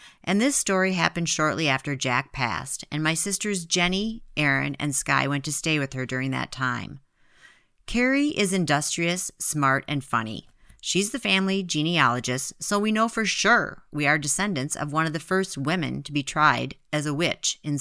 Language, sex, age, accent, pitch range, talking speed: English, female, 40-59, American, 140-195 Hz, 180 wpm